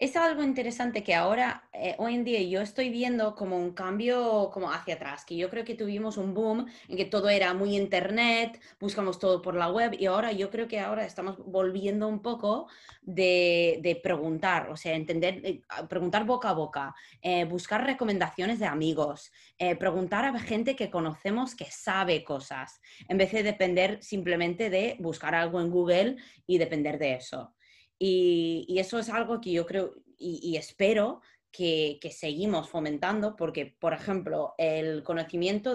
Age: 20-39